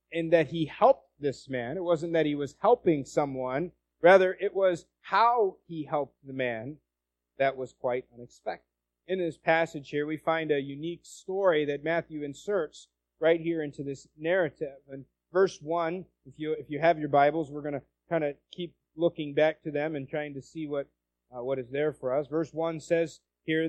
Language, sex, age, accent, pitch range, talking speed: English, male, 30-49, American, 135-160 Hz, 195 wpm